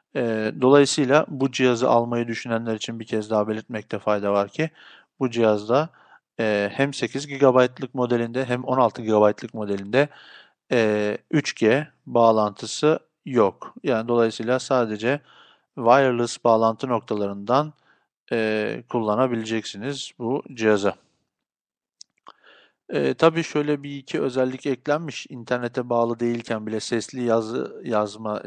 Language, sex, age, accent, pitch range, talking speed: Turkish, male, 50-69, native, 110-140 Hz, 105 wpm